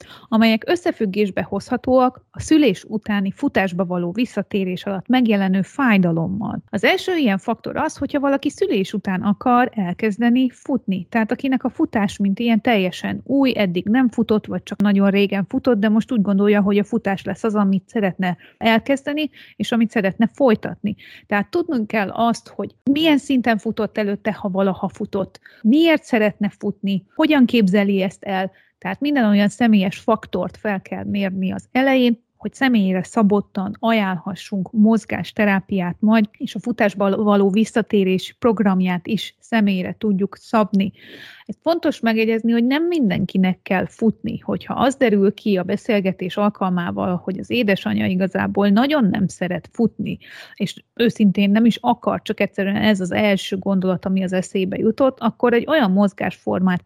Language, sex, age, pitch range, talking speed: Hungarian, female, 30-49, 195-235 Hz, 150 wpm